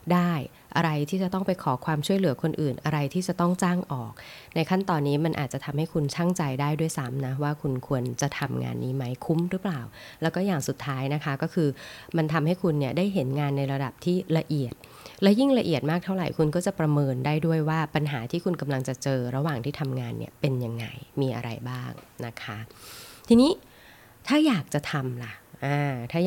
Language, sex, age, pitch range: Thai, female, 20-39, 130-170 Hz